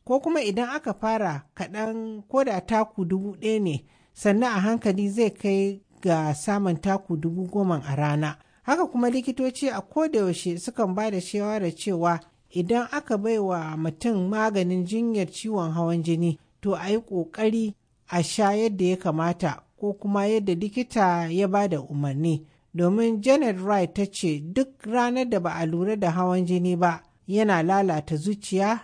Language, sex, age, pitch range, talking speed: English, male, 60-79, 170-215 Hz, 145 wpm